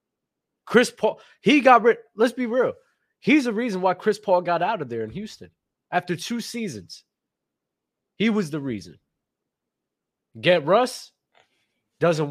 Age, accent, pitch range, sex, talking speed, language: 20-39, American, 170-225 Hz, male, 145 wpm, English